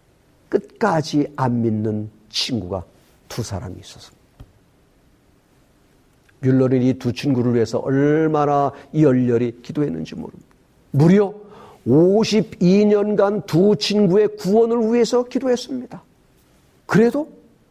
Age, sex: 50-69, male